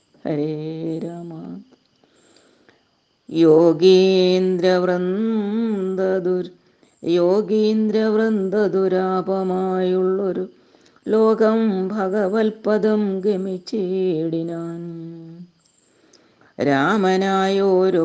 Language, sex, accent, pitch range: Malayalam, female, native, 160-190 Hz